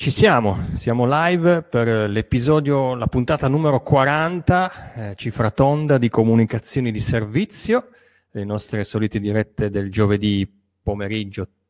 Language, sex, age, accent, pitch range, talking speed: Italian, male, 30-49, native, 100-125 Hz, 120 wpm